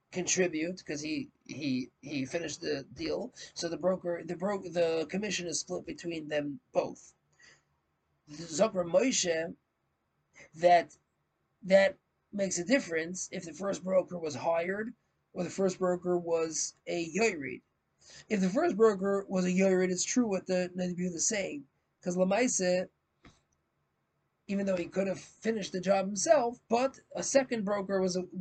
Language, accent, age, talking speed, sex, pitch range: English, American, 40-59, 150 wpm, male, 175-205 Hz